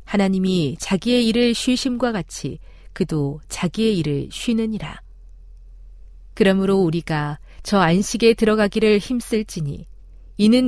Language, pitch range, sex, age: Korean, 150-215 Hz, female, 40-59